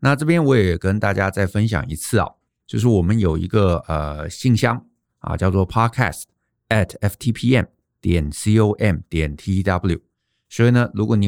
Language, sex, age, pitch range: Chinese, male, 50-69, 90-120 Hz